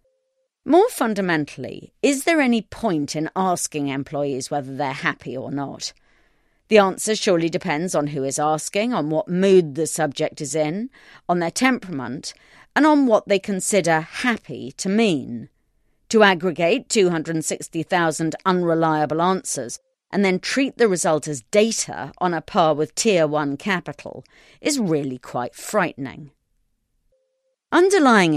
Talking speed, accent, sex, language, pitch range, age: 135 wpm, British, female, English, 150-225 Hz, 40-59